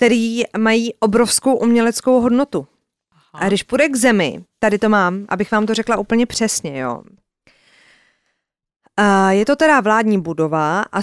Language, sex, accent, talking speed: Czech, female, native, 140 wpm